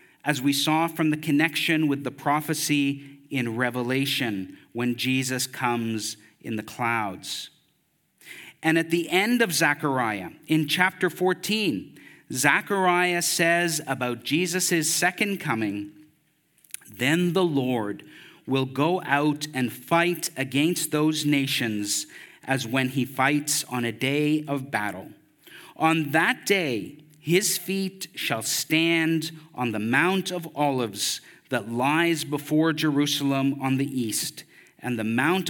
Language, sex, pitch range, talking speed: English, male, 120-160 Hz, 125 wpm